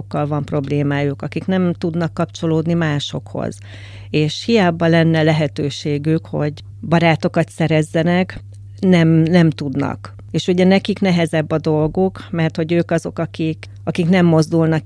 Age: 40-59